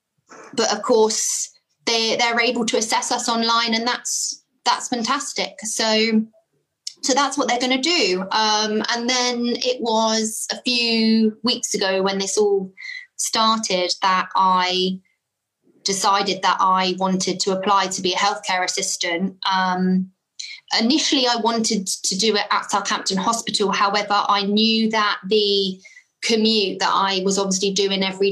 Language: English